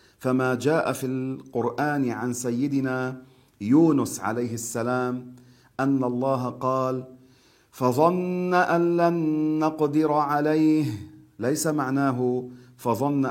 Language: Arabic